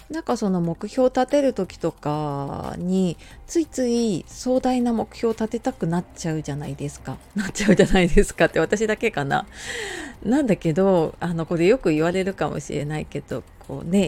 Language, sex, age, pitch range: Japanese, female, 30-49, 160-245 Hz